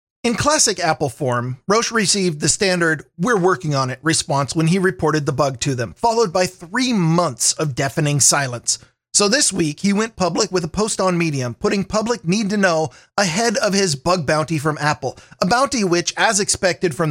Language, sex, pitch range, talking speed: English, male, 155-200 Hz, 195 wpm